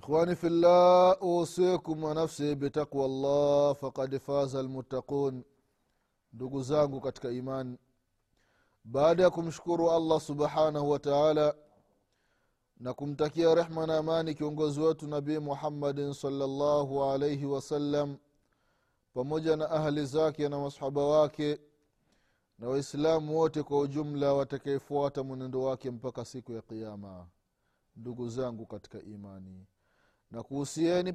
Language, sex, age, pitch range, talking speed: Swahili, male, 30-49, 135-165 Hz, 110 wpm